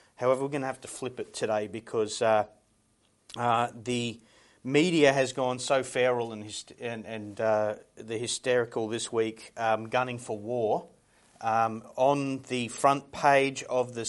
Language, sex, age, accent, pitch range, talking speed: English, male, 30-49, Australian, 115-140 Hz, 160 wpm